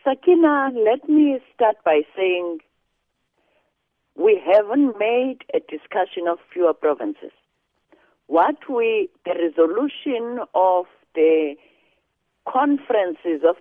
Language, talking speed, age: English, 95 wpm, 50-69